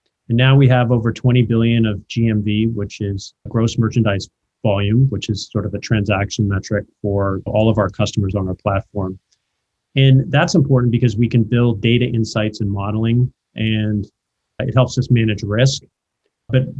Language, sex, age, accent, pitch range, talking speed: English, male, 40-59, American, 105-130 Hz, 165 wpm